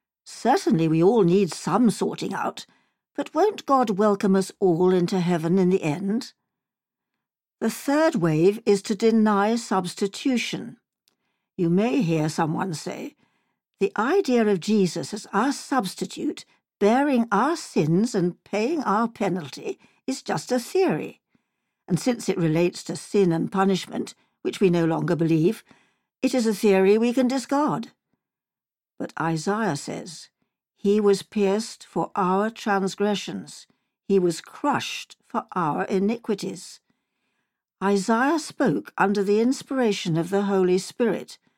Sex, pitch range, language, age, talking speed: female, 185-235 Hz, English, 60-79, 135 wpm